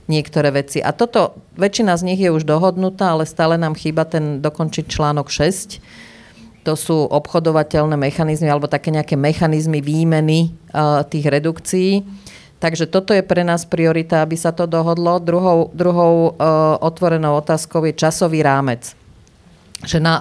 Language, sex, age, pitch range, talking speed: Slovak, female, 40-59, 145-170 Hz, 150 wpm